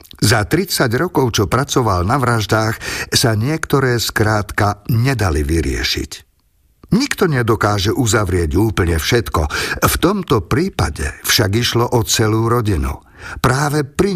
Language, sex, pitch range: Slovak, male, 95-130 Hz